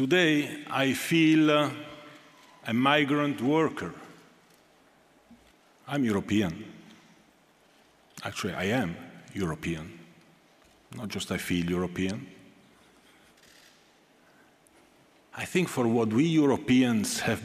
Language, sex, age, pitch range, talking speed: English, male, 50-69, 95-130 Hz, 85 wpm